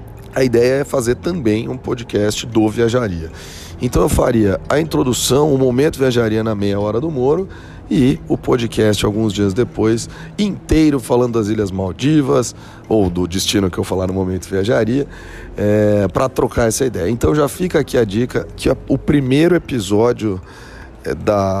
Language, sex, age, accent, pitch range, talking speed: Portuguese, male, 40-59, Brazilian, 100-125 Hz, 160 wpm